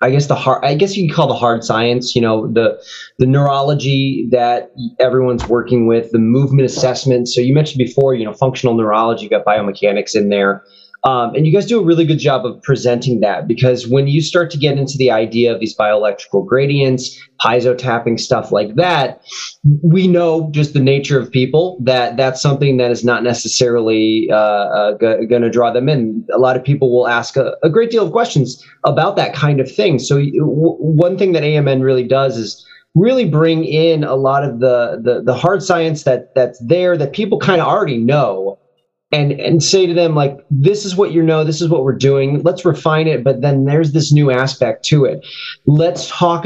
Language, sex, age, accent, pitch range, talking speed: English, male, 20-39, American, 120-155 Hz, 210 wpm